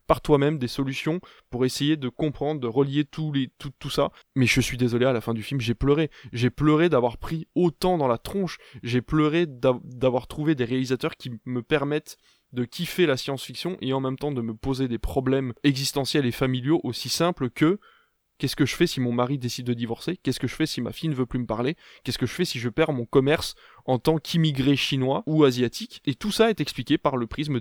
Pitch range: 125-150 Hz